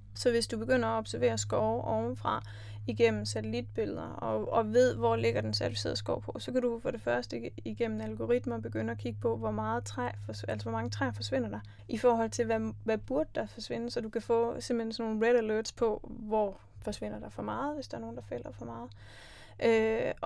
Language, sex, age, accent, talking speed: Danish, female, 20-39, native, 215 wpm